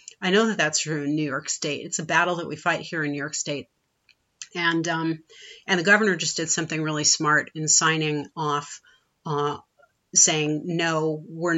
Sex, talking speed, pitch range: female, 190 wpm, 150-185 Hz